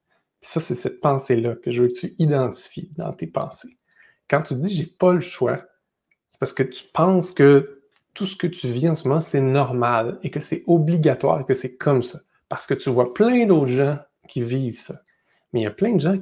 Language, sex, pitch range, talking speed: French, male, 125-165 Hz, 225 wpm